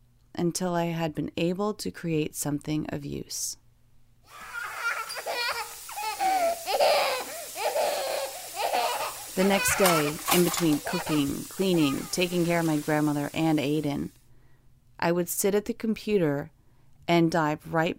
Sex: female